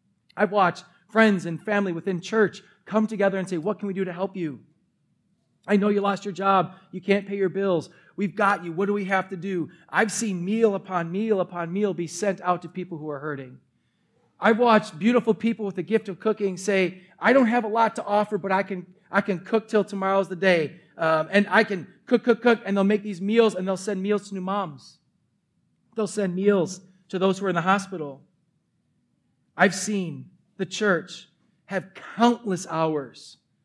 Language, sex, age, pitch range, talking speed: English, male, 30-49, 160-200 Hz, 205 wpm